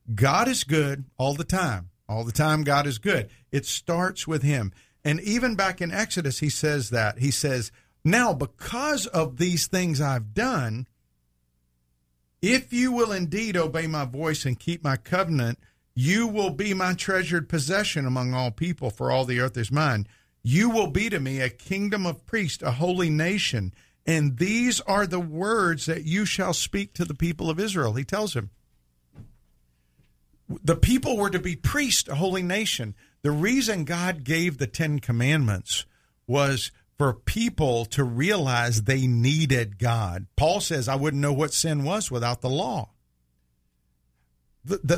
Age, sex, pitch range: 50-69, male, 120-180 Hz